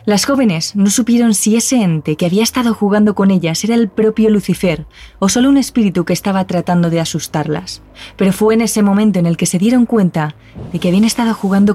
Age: 20-39